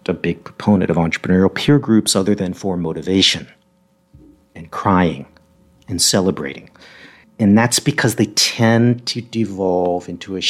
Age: 50-69